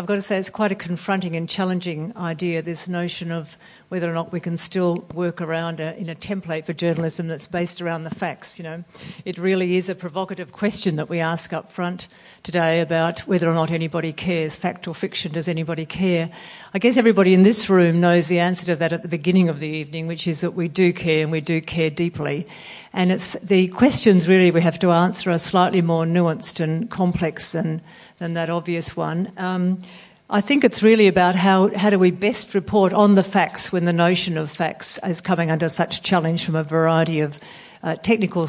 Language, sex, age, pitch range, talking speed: English, female, 50-69, 165-190 Hz, 215 wpm